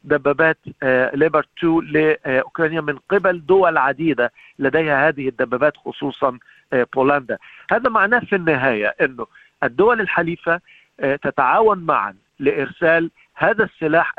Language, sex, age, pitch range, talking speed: Arabic, male, 50-69, 135-165 Hz, 100 wpm